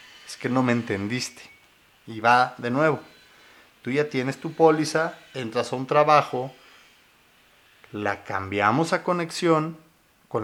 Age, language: 50-69, Spanish